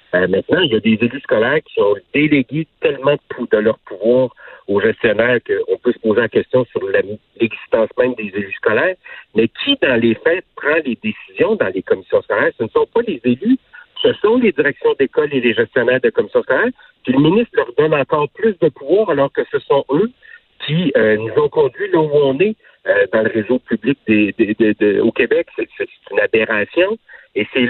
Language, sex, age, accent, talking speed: French, male, 60-79, French, 205 wpm